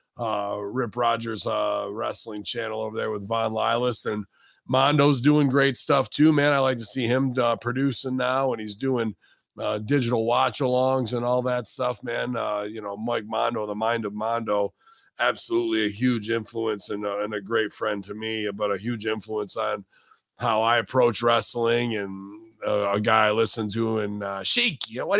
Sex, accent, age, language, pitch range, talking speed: male, American, 40-59, English, 105-125 Hz, 190 wpm